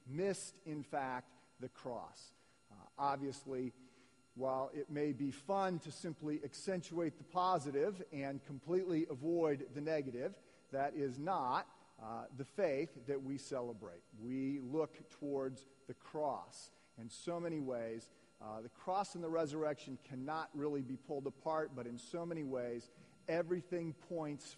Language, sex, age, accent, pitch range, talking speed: English, male, 40-59, American, 135-170 Hz, 140 wpm